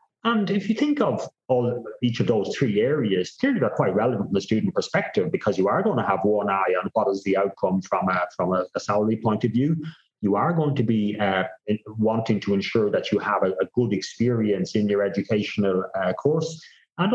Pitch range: 100-135 Hz